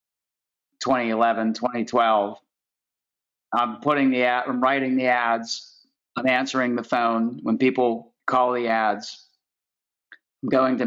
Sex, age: male, 30-49